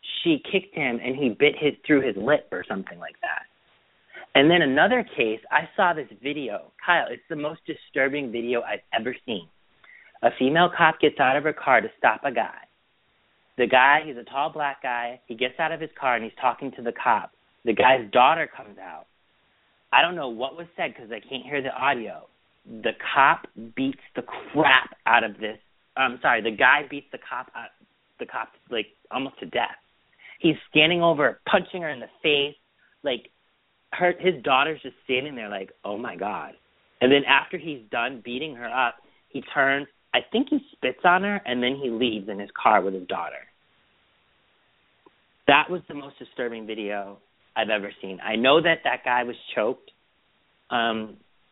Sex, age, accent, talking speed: male, 30-49, American, 190 wpm